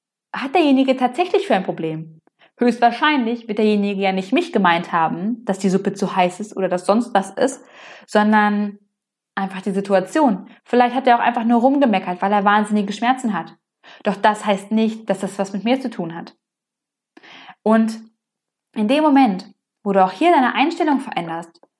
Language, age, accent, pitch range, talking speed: German, 20-39, German, 190-250 Hz, 175 wpm